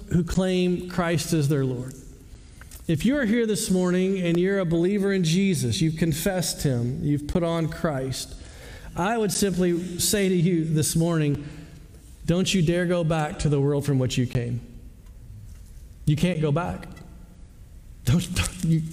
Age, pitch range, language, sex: 40-59, 155-220 Hz, English, male